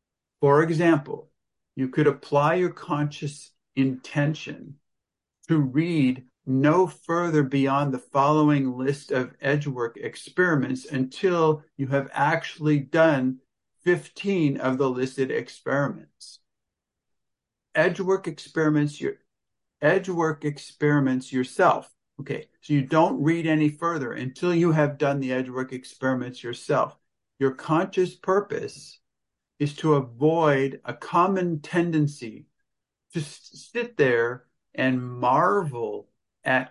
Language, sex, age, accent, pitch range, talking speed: English, male, 50-69, American, 130-160 Hz, 115 wpm